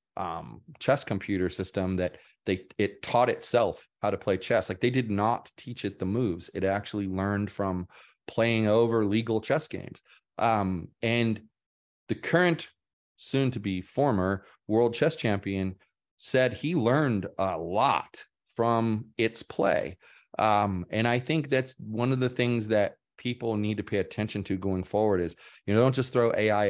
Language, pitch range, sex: English, 100-120 Hz, male